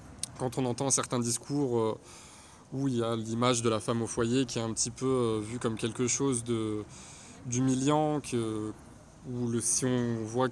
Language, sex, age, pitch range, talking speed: French, male, 20-39, 115-130 Hz, 195 wpm